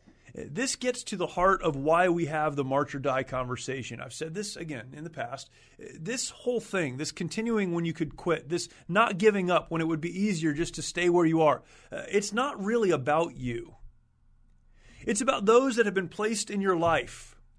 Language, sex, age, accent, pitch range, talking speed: English, male, 30-49, American, 150-200 Hz, 205 wpm